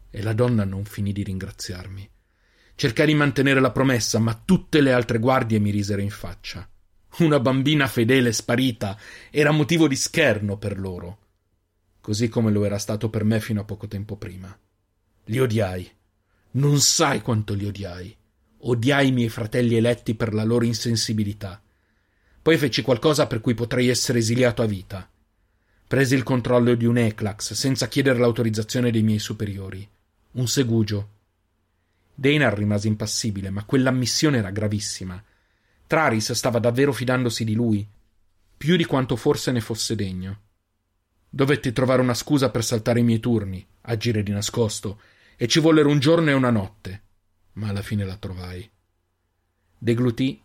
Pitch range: 100-125 Hz